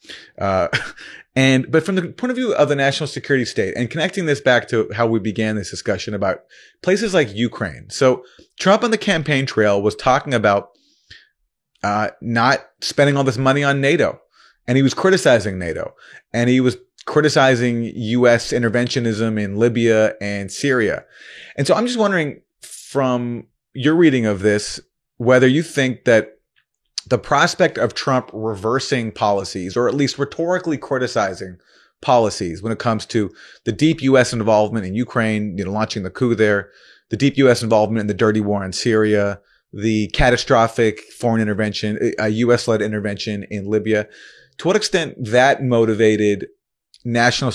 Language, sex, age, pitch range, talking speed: English, male, 30-49, 110-140 Hz, 160 wpm